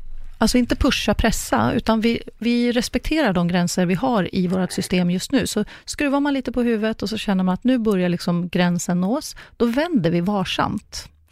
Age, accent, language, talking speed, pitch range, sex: 30-49, native, Swedish, 190 wpm, 190-240 Hz, female